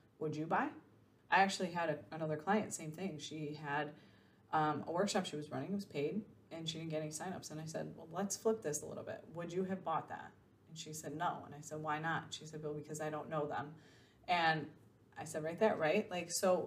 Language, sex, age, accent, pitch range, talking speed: English, female, 30-49, American, 150-185 Hz, 240 wpm